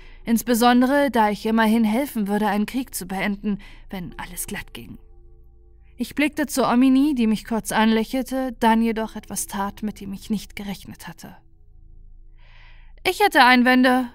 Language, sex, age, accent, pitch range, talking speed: German, female, 20-39, German, 195-255 Hz, 150 wpm